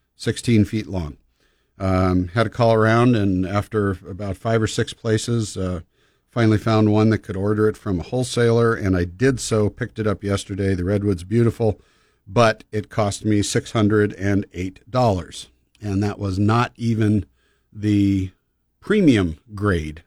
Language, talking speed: English, 150 wpm